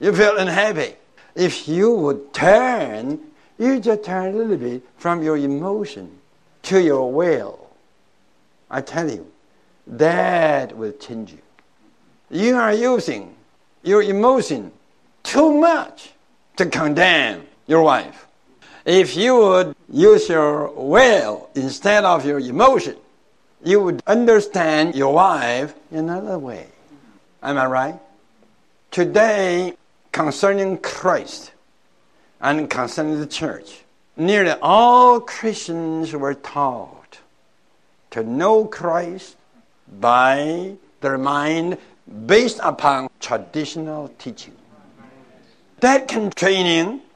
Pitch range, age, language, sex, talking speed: 140-220 Hz, 60-79, English, male, 105 wpm